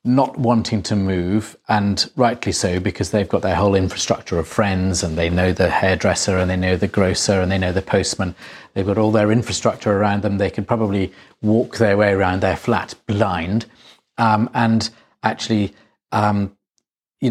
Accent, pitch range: British, 95-115 Hz